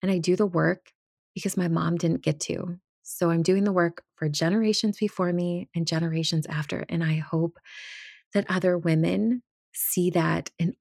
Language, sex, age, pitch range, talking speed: English, female, 20-39, 155-175 Hz, 180 wpm